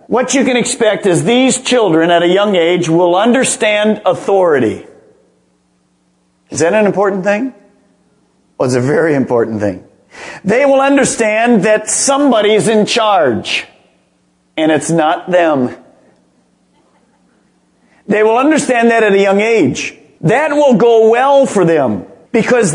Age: 50-69